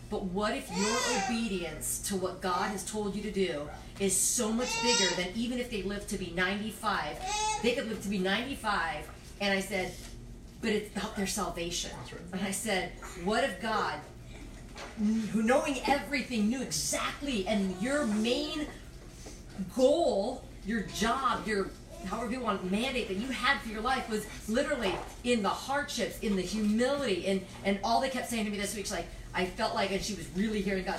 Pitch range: 185-235 Hz